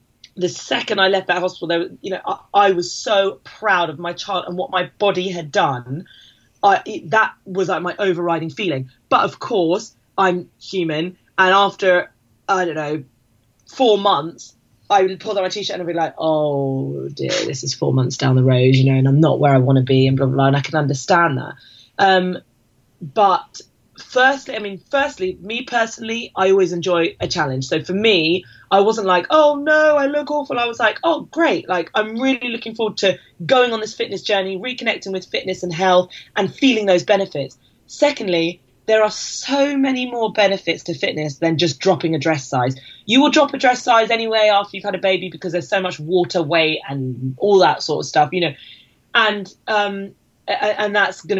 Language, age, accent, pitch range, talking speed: English, 20-39, British, 160-210 Hz, 205 wpm